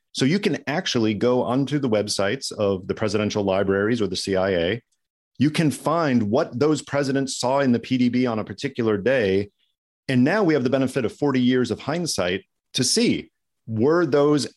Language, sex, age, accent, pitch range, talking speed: English, male, 40-59, American, 110-135 Hz, 180 wpm